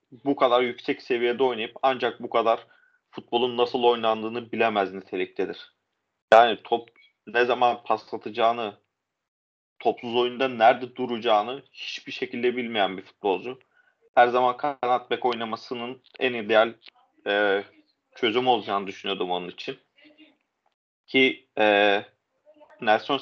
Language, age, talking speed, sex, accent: Turkish, 40-59, 110 wpm, male, native